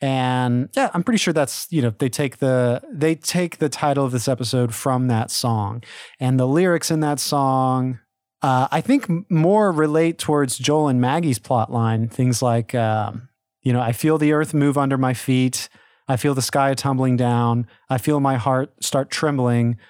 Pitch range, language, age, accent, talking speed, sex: 125-155 Hz, English, 30-49, American, 190 wpm, male